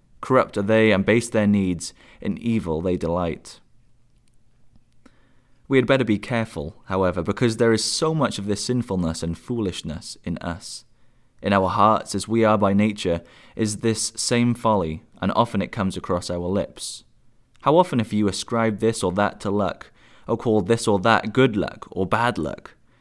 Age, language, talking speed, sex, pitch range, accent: 20-39, English, 175 wpm, male, 95-115 Hz, British